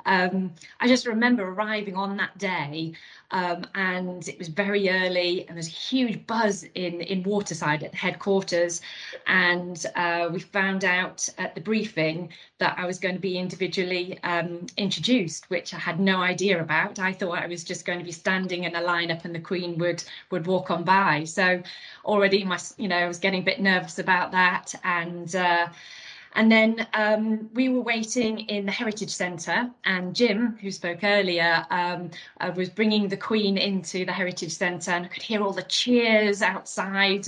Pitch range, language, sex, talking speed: 175-205 Hz, English, female, 185 wpm